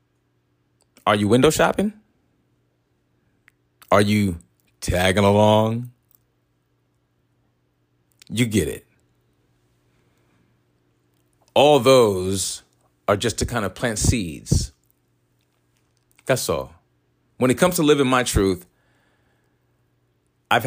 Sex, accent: male, American